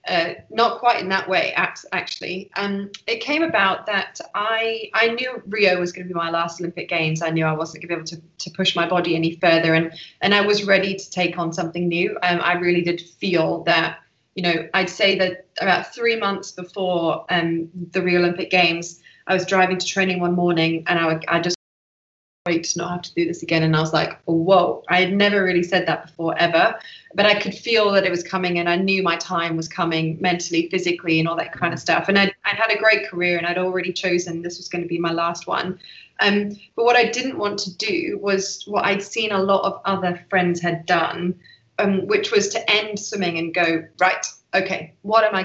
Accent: British